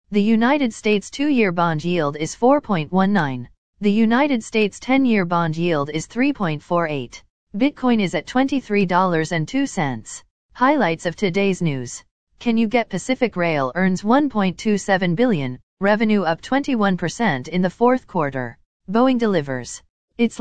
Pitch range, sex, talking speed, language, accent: 160-235 Hz, female, 125 wpm, English, American